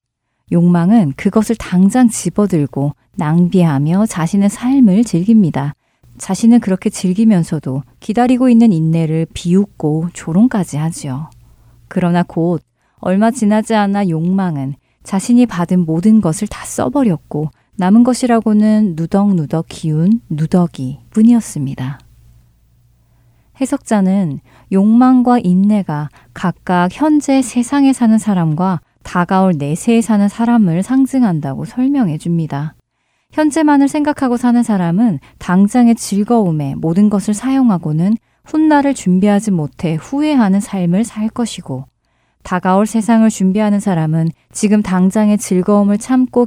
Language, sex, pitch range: Korean, female, 160-225 Hz